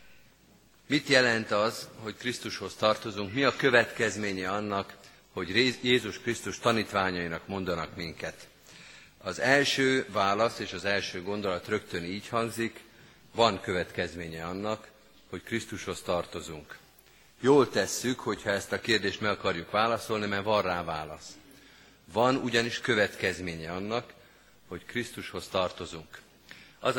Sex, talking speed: male, 120 wpm